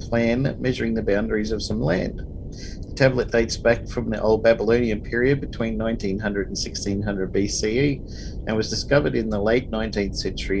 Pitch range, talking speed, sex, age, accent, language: 95-115 Hz, 165 wpm, male, 50-69, Australian, English